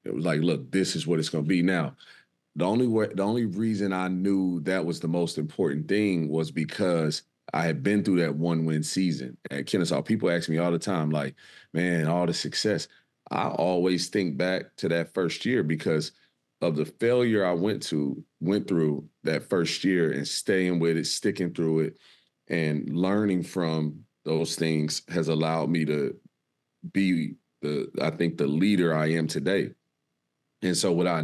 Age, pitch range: 30-49, 75-90 Hz